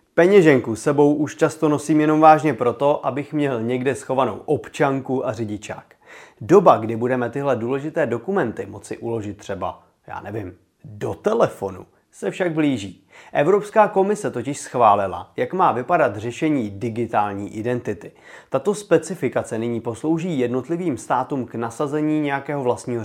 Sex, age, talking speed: male, 30-49, 135 wpm